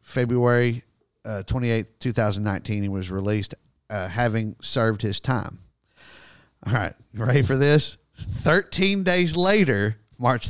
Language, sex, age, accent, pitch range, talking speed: English, male, 50-69, American, 110-145 Hz, 120 wpm